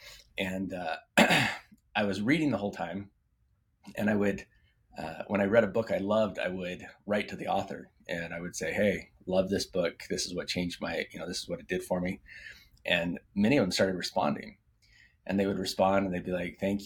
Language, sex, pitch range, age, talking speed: English, male, 90-105 Hz, 20-39, 220 wpm